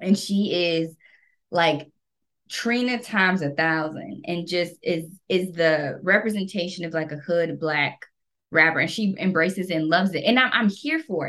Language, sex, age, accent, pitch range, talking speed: English, female, 20-39, American, 160-210 Hz, 170 wpm